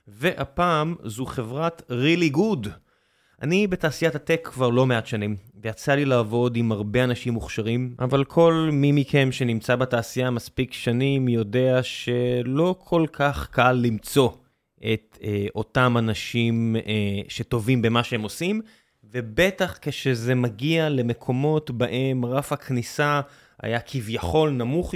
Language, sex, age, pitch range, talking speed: Hebrew, male, 20-39, 120-150 Hz, 125 wpm